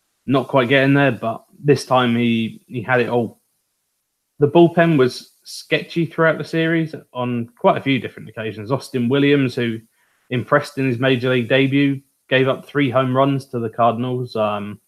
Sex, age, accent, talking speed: male, 20-39, British, 175 wpm